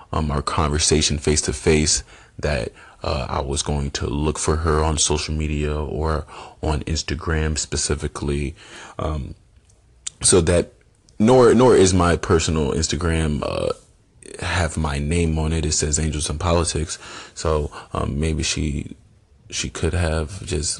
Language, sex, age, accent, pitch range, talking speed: English, male, 30-49, American, 75-85 Hz, 145 wpm